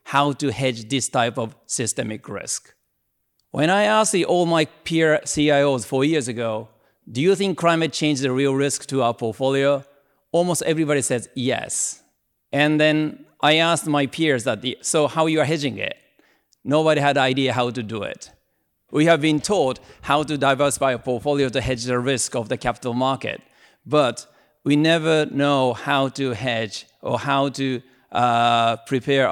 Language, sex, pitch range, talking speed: English, male, 125-150 Hz, 170 wpm